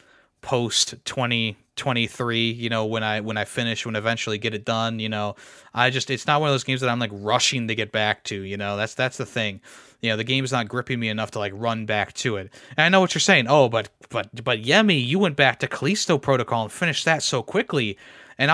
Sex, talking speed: male, 250 wpm